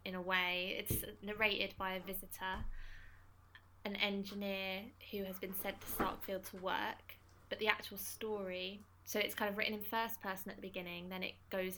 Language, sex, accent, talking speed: English, female, British, 185 wpm